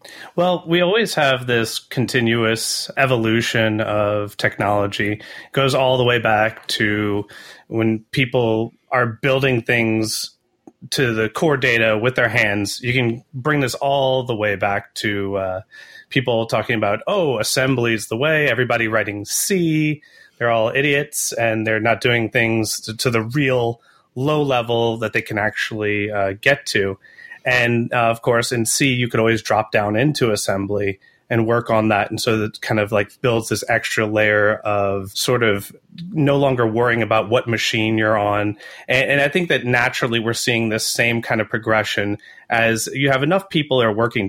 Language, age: English, 30-49